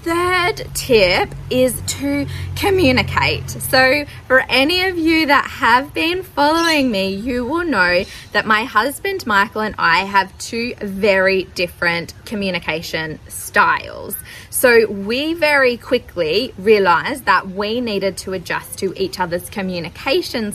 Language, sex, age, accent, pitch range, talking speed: English, female, 20-39, Australian, 195-285 Hz, 130 wpm